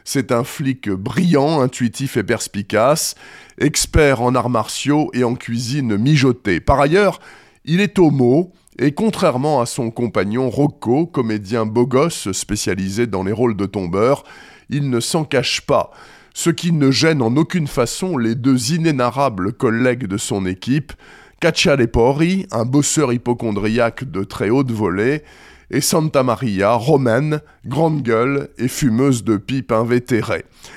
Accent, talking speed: French, 140 wpm